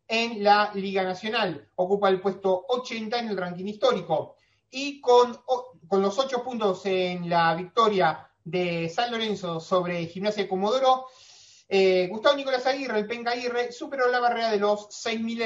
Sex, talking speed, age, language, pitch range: male, 165 wpm, 30-49, Spanish, 190-245 Hz